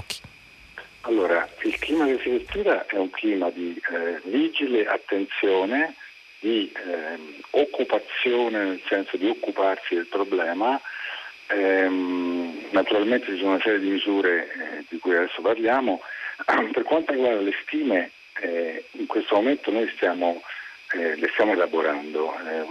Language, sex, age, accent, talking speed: Italian, male, 50-69, native, 135 wpm